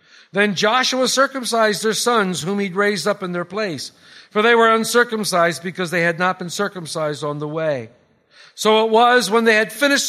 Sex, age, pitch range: male, 50-69, 180-235 Hz